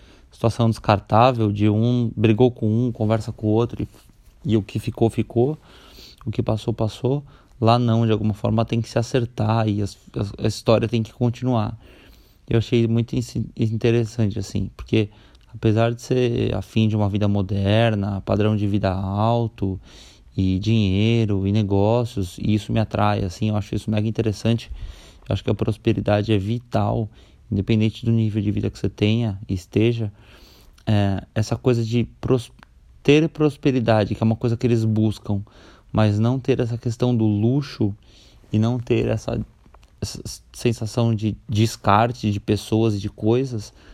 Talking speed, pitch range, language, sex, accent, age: 165 wpm, 105-120 Hz, Portuguese, male, Brazilian, 20-39